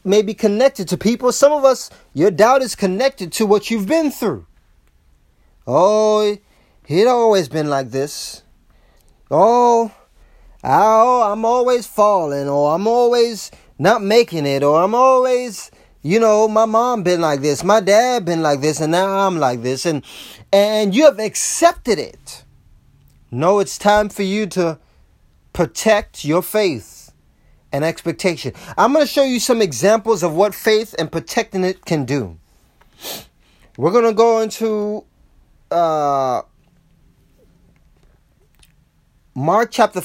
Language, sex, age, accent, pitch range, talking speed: English, male, 30-49, American, 140-220 Hz, 140 wpm